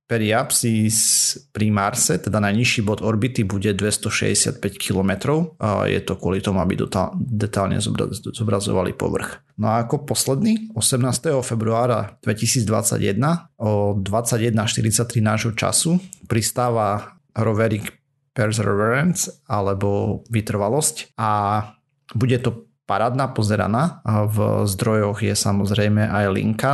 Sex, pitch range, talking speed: male, 105-125 Hz, 105 wpm